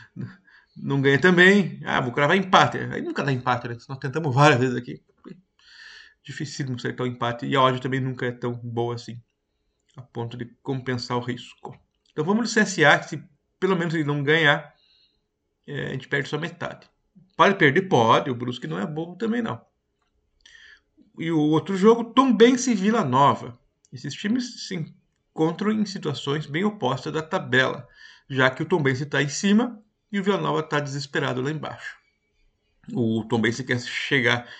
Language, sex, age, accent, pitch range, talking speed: Portuguese, male, 50-69, Brazilian, 125-180 Hz, 170 wpm